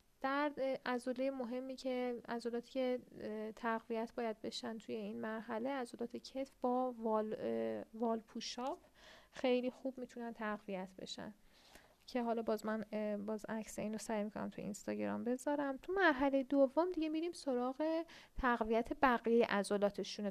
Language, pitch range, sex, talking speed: Persian, 220-275 Hz, female, 130 wpm